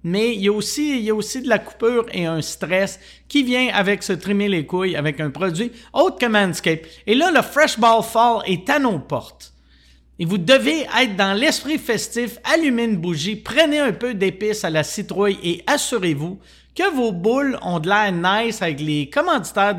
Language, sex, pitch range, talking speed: French, male, 185-245 Hz, 190 wpm